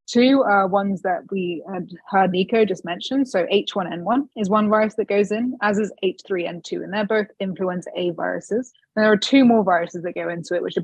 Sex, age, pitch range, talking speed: female, 20-39, 175-215 Hz, 215 wpm